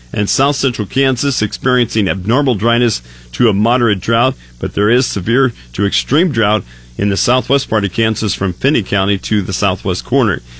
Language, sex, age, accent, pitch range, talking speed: English, male, 40-59, American, 100-125 Hz, 175 wpm